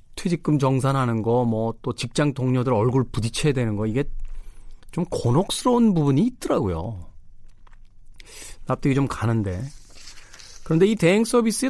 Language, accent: Korean, native